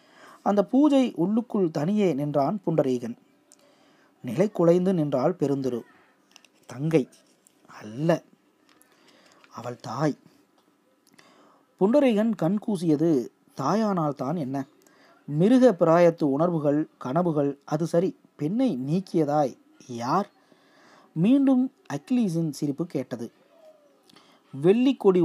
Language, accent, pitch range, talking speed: Tamil, native, 145-215 Hz, 75 wpm